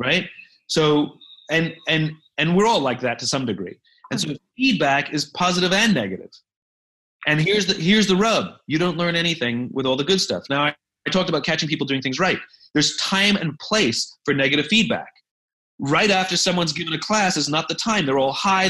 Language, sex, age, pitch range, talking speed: English, male, 30-49, 145-195 Hz, 205 wpm